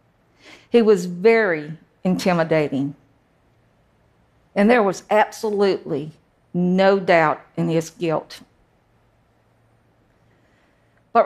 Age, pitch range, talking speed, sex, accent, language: 50-69, 175-225 Hz, 75 wpm, female, American, English